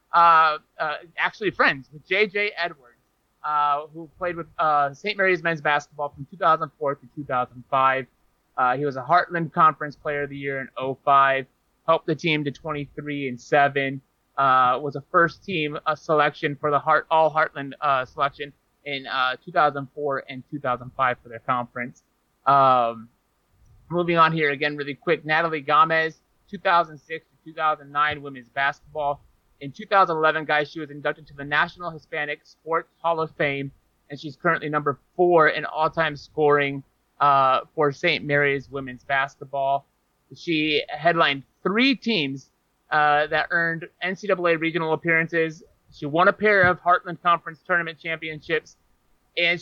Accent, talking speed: American, 150 wpm